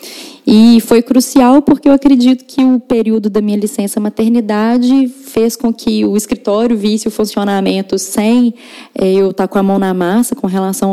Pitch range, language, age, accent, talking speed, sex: 200-255 Hz, Portuguese, 10-29, Brazilian, 170 wpm, female